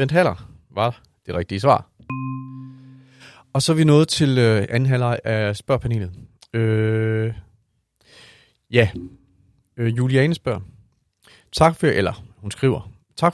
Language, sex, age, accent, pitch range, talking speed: Danish, male, 40-59, native, 110-145 Hz, 115 wpm